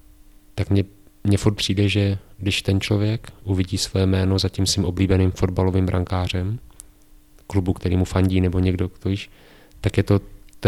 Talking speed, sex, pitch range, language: 155 wpm, male, 95-110 Hz, Czech